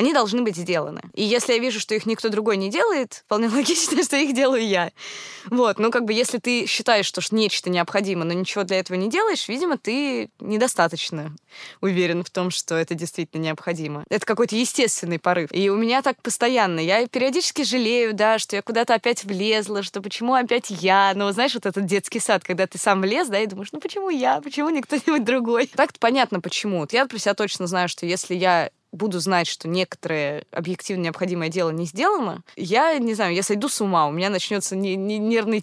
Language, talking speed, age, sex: Russian, 200 wpm, 20-39, female